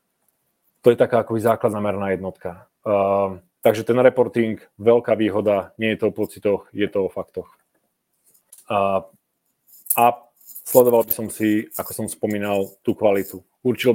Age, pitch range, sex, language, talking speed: 30-49, 105-115 Hz, male, Czech, 145 wpm